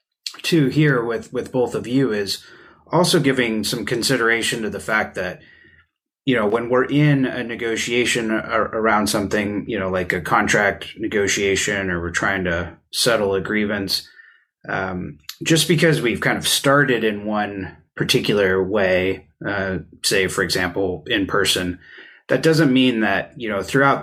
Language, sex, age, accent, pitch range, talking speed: English, male, 30-49, American, 95-130 Hz, 155 wpm